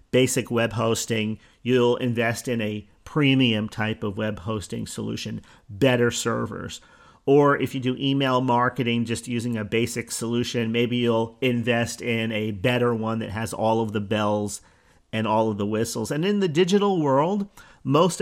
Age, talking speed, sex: 40-59, 165 wpm, male